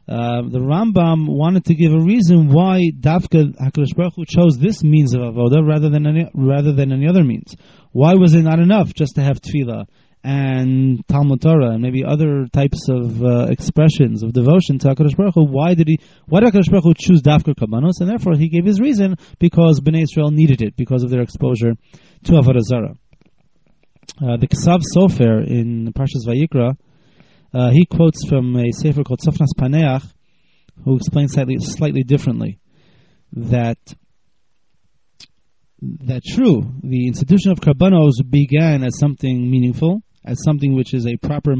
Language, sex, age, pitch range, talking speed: English, male, 30-49, 125-165 Hz, 165 wpm